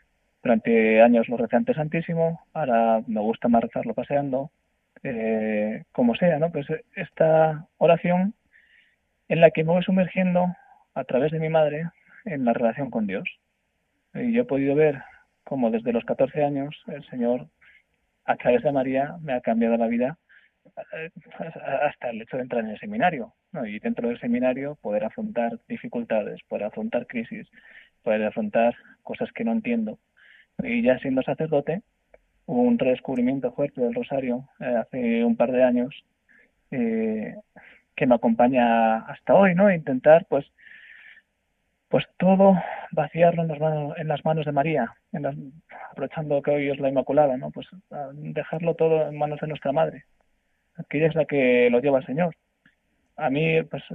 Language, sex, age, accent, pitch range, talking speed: Spanish, male, 20-39, Spanish, 130-195 Hz, 160 wpm